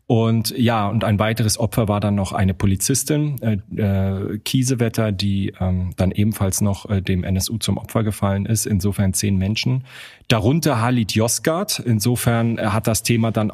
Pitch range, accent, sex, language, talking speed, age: 100-120 Hz, German, male, German, 165 wpm, 30-49